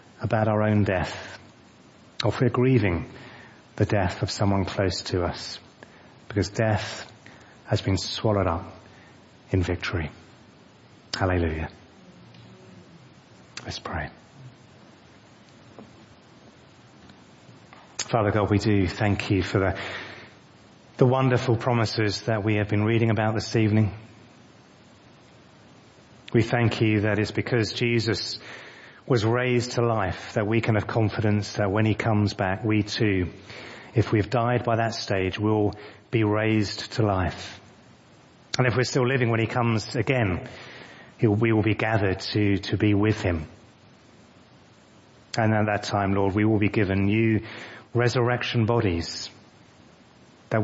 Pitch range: 100-115 Hz